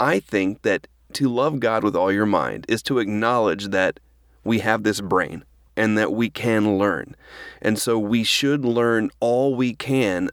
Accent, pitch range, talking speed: American, 105-125 Hz, 180 wpm